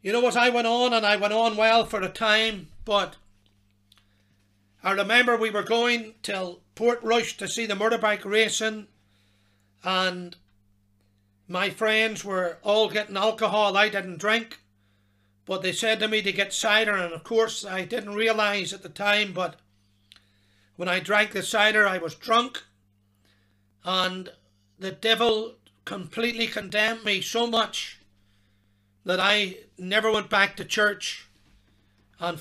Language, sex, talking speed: English, male, 150 wpm